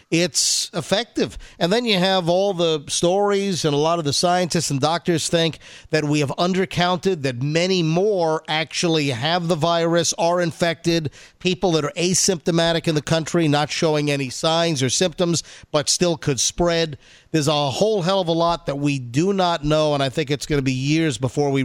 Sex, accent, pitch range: male, American, 150-180 Hz